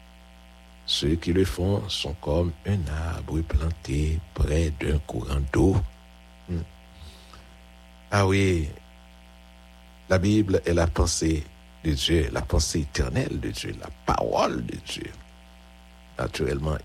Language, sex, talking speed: English, male, 120 wpm